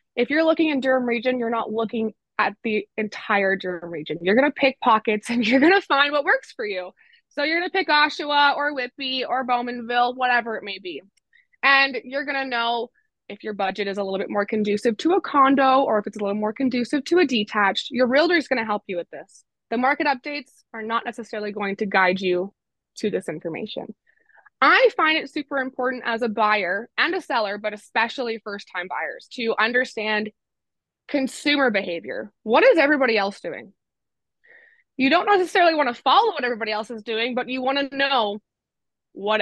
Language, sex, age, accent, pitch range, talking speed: English, female, 20-39, American, 210-280 Hz, 200 wpm